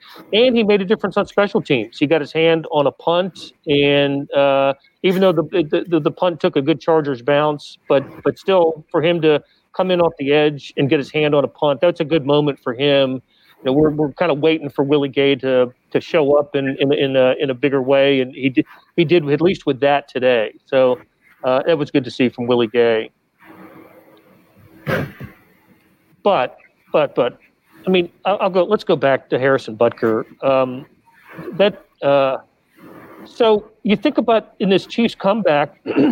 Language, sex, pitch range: English, male, 140-185 Hz